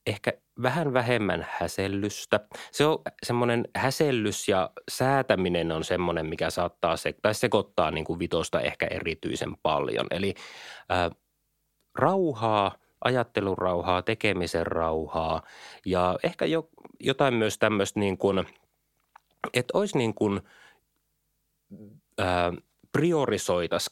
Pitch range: 90-125 Hz